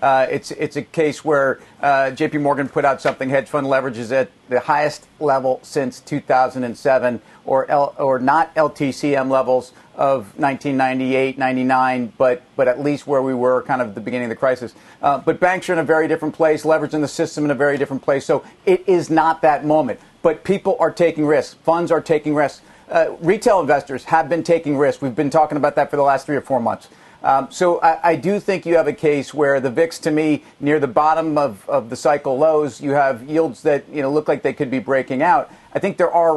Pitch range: 130-155 Hz